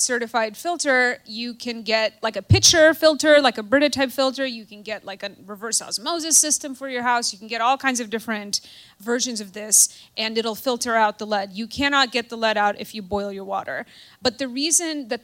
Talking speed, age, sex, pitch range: 220 wpm, 30-49, female, 215-270 Hz